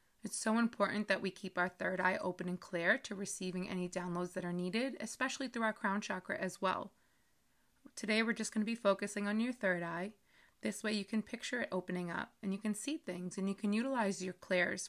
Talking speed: 225 wpm